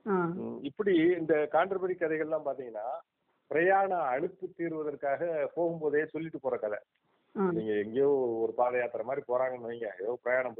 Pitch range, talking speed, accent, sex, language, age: 130-180 Hz, 115 wpm, native, male, Tamil, 50-69